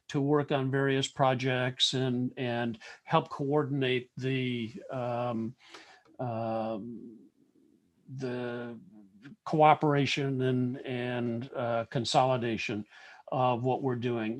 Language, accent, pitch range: English, American, 125-155 Hz